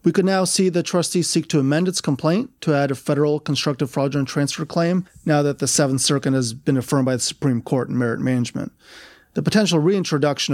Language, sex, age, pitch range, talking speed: English, male, 30-49, 130-155 Hz, 210 wpm